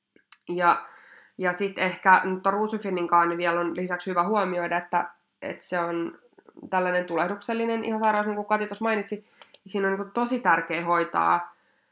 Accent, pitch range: native, 170-215 Hz